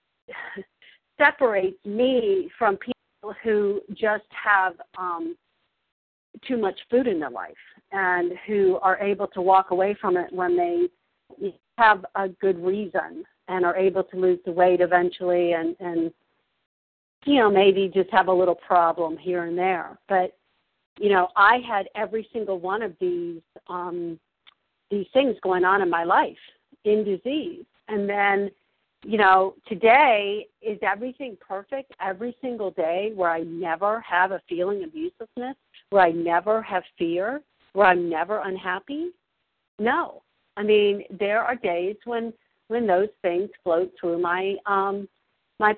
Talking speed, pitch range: 150 wpm, 180-220 Hz